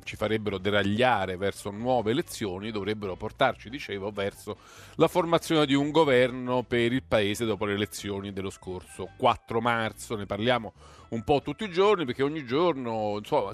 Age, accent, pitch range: 40-59, native, 110-150 Hz